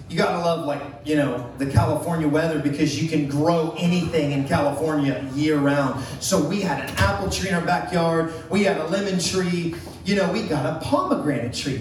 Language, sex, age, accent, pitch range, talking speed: English, male, 30-49, American, 145-195 Hz, 205 wpm